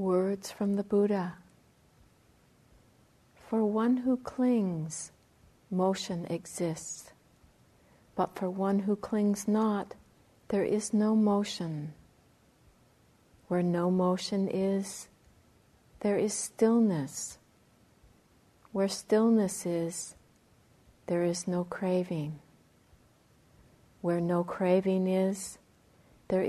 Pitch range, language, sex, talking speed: 175-200 Hz, English, female, 90 wpm